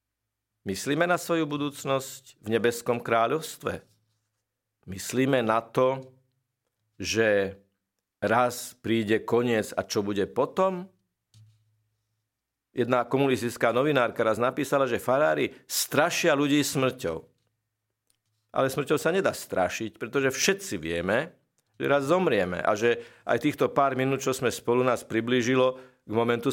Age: 50-69